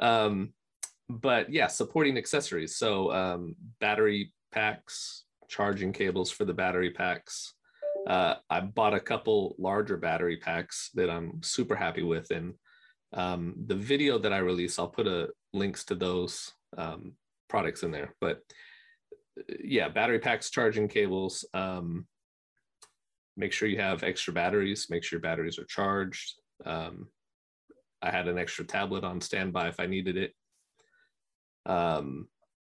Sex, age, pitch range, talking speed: male, 30-49, 95-115 Hz, 140 wpm